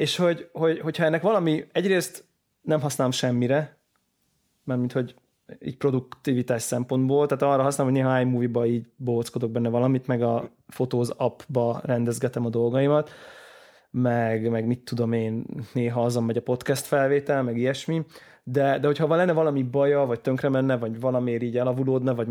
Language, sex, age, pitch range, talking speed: Hungarian, male, 20-39, 120-145 Hz, 160 wpm